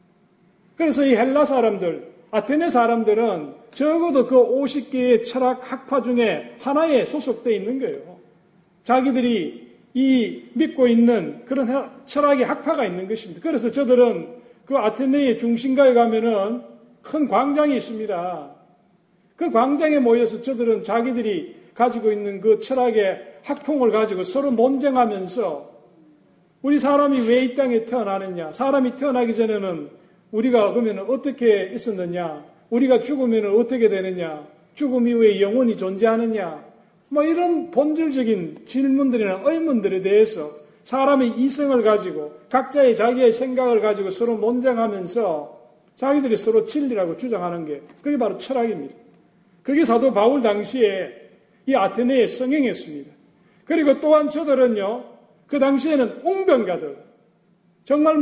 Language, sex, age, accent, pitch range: Korean, male, 40-59, native, 200-270 Hz